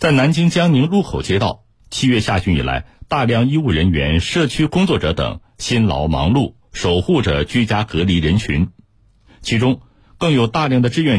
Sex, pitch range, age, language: male, 85-120 Hz, 50-69, Chinese